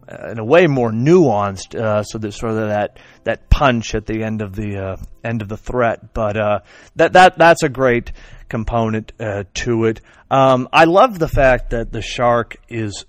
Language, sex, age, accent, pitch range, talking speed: English, male, 30-49, American, 100-120 Hz, 200 wpm